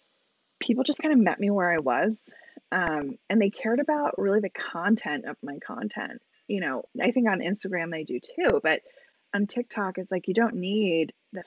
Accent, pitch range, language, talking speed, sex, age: American, 170-245 Hz, English, 200 wpm, female, 20-39